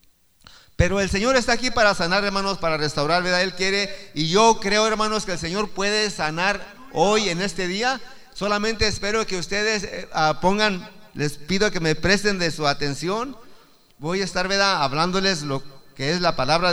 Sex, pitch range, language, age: male, 175-235 Hz, Spanish, 50-69